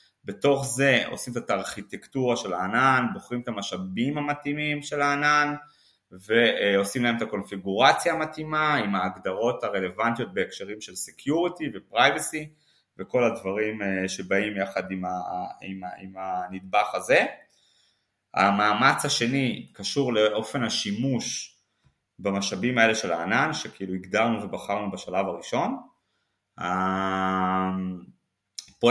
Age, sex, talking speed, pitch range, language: 20-39, male, 100 wpm, 95-135 Hz, Hebrew